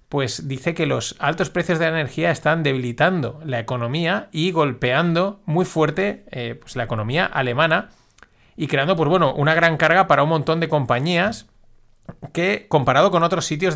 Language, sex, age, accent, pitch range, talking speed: Spanish, male, 30-49, Spanish, 125-170 Hz, 170 wpm